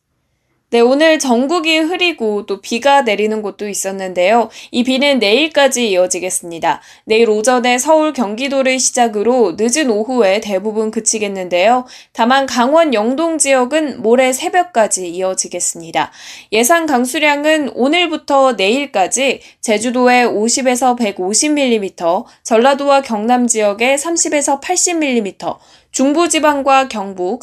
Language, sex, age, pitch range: Korean, female, 10-29, 210-290 Hz